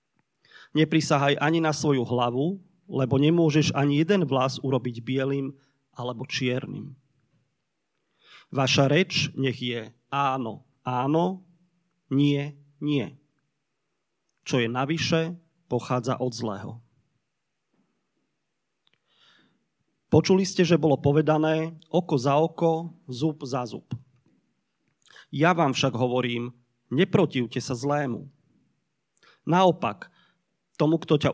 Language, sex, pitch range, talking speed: Slovak, male, 130-165 Hz, 100 wpm